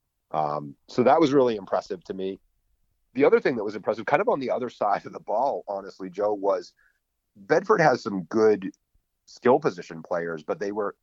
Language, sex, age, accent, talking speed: English, male, 40-59, American, 195 wpm